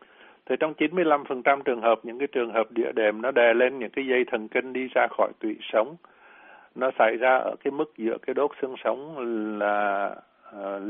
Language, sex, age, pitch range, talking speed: Vietnamese, male, 60-79, 110-130 Hz, 205 wpm